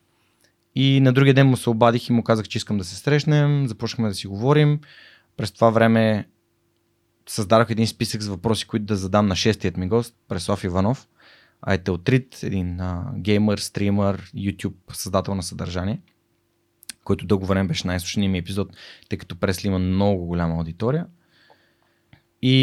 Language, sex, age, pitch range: Bulgarian, male, 20-39, 100-125 Hz